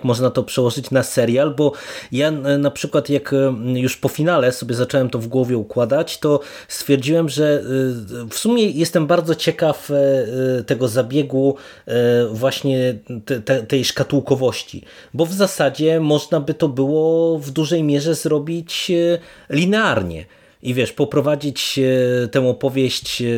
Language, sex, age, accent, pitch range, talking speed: Polish, male, 30-49, native, 115-145 Hz, 125 wpm